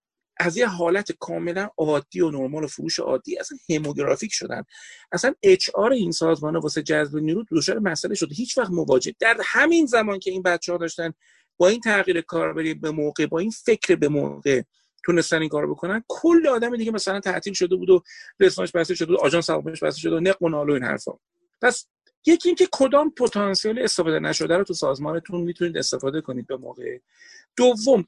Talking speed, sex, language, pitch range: 175 wpm, male, Persian, 165-245 Hz